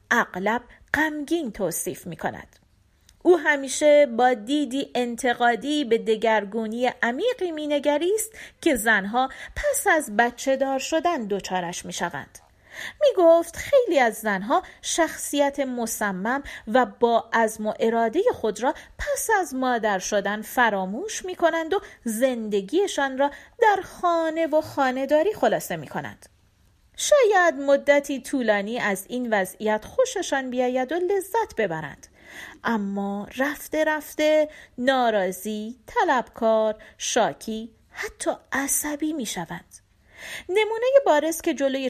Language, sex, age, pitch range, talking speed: Persian, female, 40-59, 225-305 Hz, 115 wpm